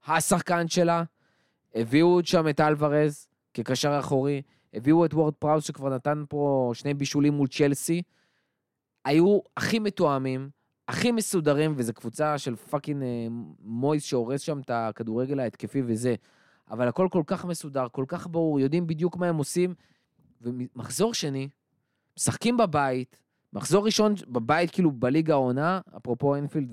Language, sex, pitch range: Hebrew, male, 125-165 Hz